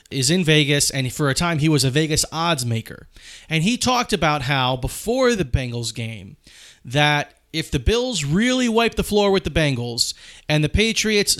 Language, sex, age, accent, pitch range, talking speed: English, male, 30-49, American, 135-185 Hz, 190 wpm